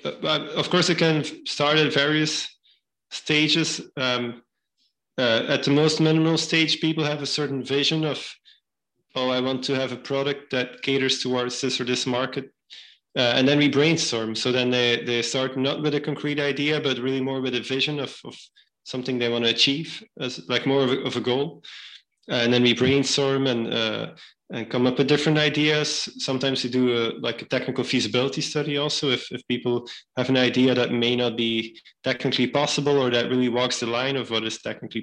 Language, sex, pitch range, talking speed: English, male, 120-145 Hz, 200 wpm